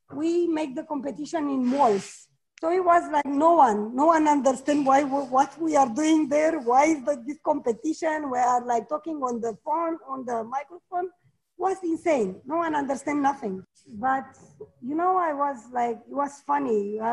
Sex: female